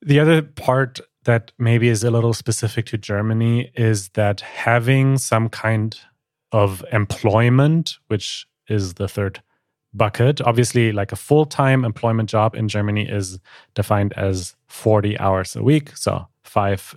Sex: male